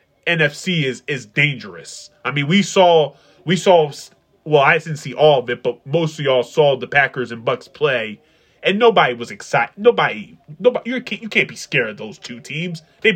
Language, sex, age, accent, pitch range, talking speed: English, male, 20-39, American, 135-175 Hz, 200 wpm